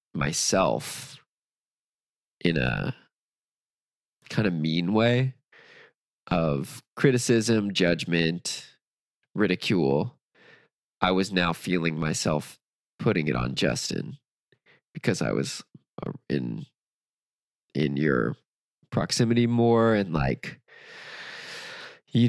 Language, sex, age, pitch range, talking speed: English, male, 20-39, 80-115 Hz, 85 wpm